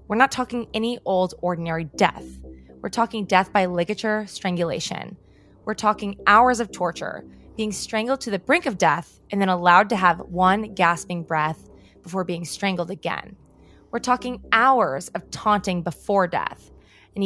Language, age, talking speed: English, 20-39, 155 wpm